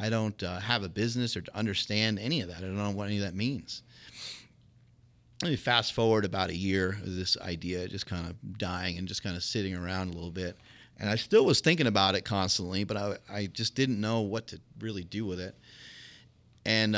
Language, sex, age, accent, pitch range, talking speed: English, male, 30-49, American, 95-115 Hz, 225 wpm